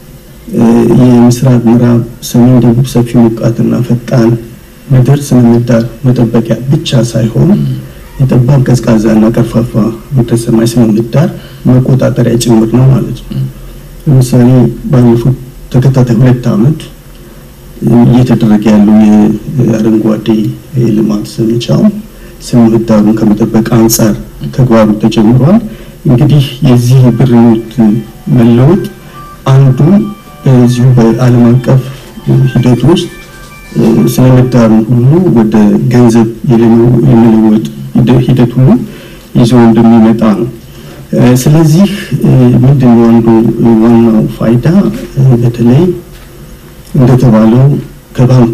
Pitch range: 115-130 Hz